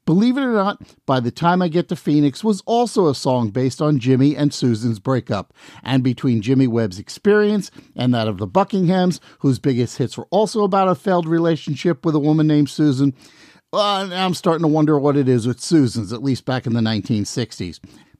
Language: English